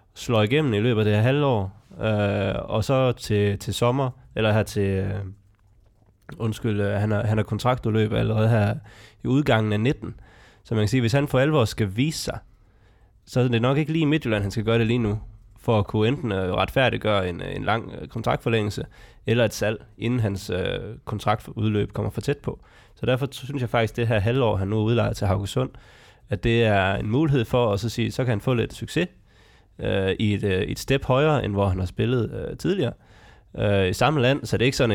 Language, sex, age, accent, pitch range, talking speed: Danish, male, 20-39, native, 105-125 Hz, 220 wpm